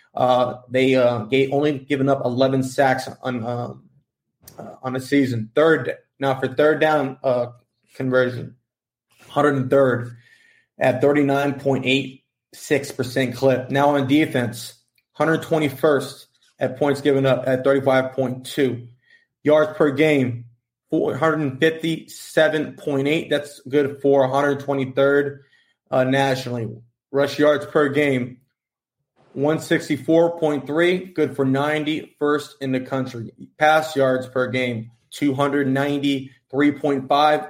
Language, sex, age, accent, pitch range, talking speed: English, male, 20-39, American, 130-150 Hz, 105 wpm